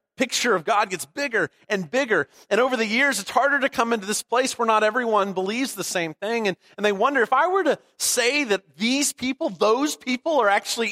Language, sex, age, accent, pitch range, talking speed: English, male, 40-59, American, 130-205 Hz, 225 wpm